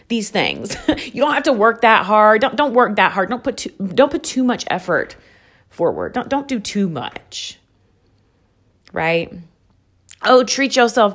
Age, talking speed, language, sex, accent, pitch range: 30-49, 170 wpm, English, female, American, 185-250 Hz